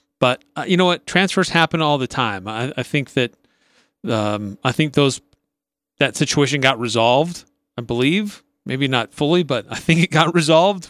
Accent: American